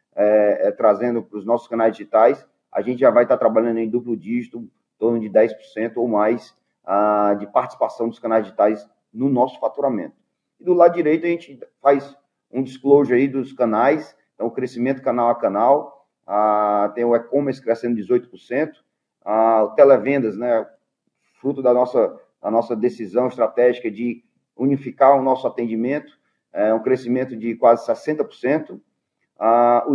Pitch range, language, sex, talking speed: 115-140 Hz, Portuguese, male, 160 wpm